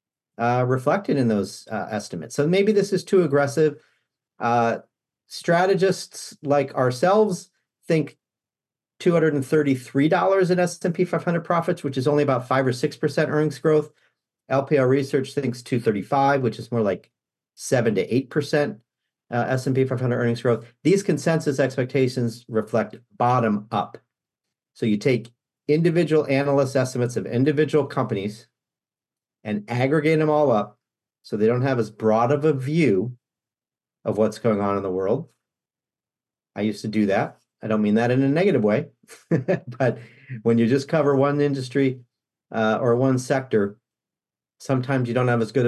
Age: 50-69